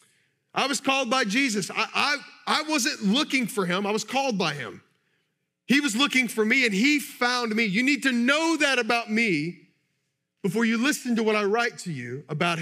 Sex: male